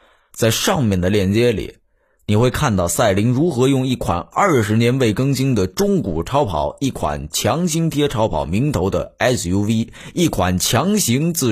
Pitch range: 100-150 Hz